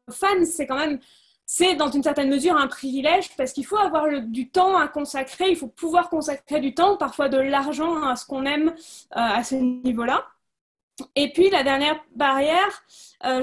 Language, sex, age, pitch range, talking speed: French, female, 20-39, 260-325 Hz, 190 wpm